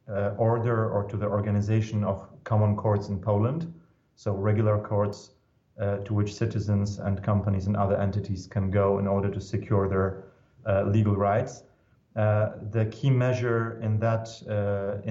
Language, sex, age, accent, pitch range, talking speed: English, male, 30-49, German, 100-115 Hz, 160 wpm